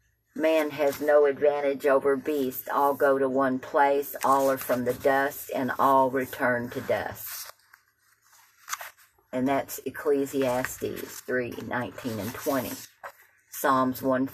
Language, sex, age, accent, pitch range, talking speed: English, female, 50-69, American, 125-140 Hz, 120 wpm